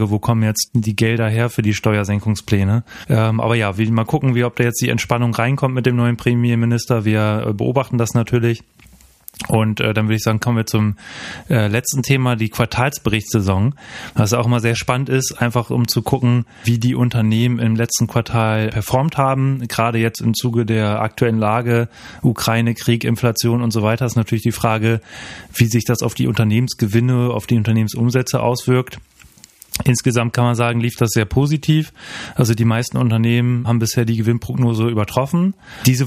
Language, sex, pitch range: German, male, 115-125 Hz